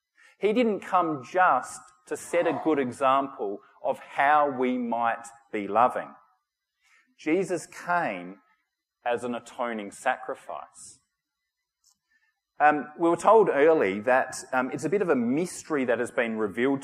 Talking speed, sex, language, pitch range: 135 wpm, male, English, 125-185 Hz